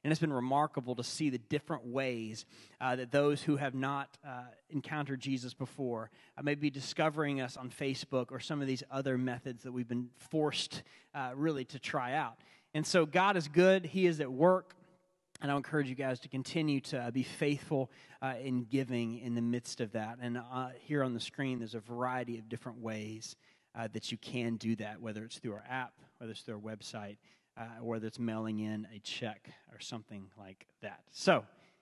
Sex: male